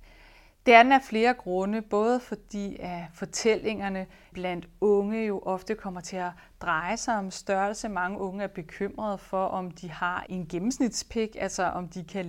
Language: Danish